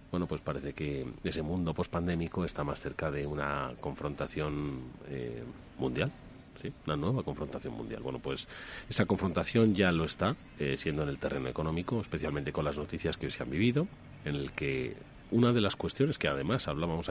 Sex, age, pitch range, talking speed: male, 40-59, 75-95 Hz, 180 wpm